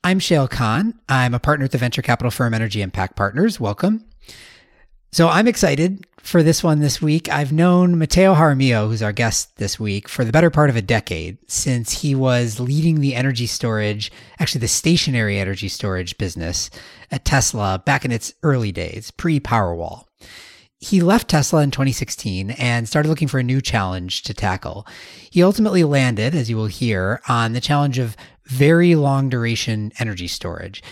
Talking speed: 175 wpm